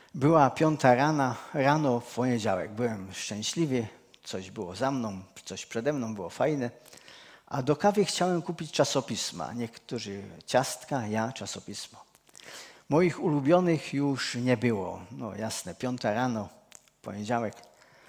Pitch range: 115-150 Hz